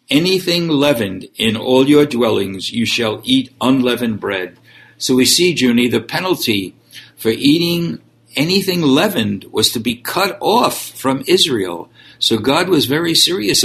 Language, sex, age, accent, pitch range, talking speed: English, male, 60-79, American, 115-145 Hz, 145 wpm